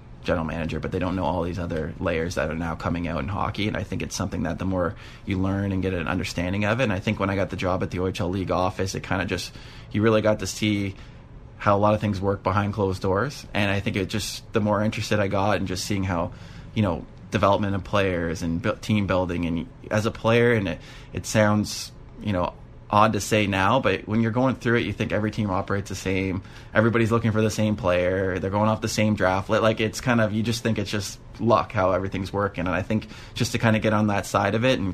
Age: 20-39